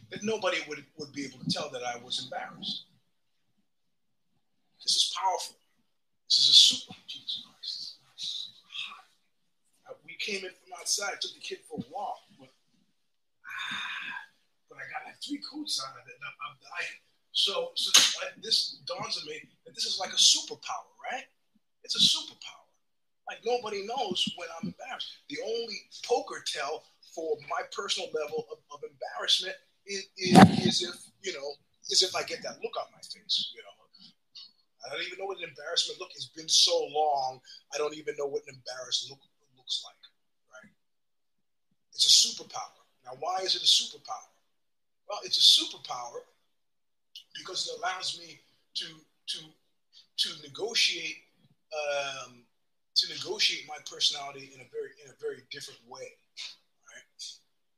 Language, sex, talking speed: English, male, 165 wpm